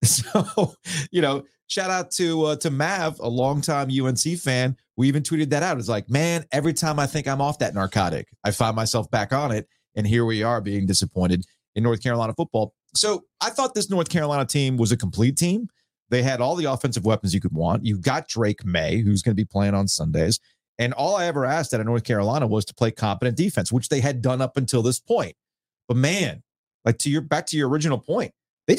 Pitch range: 120-160 Hz